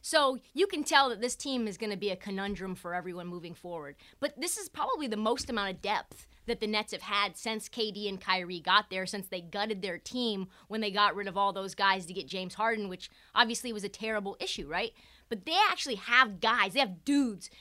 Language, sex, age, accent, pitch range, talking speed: English, female, 30-49, American, 200-270 Hz, 230 wpm